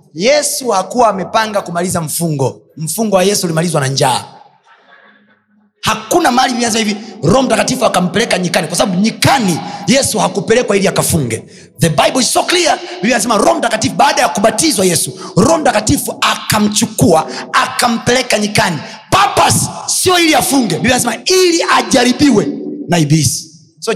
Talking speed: 140 wpm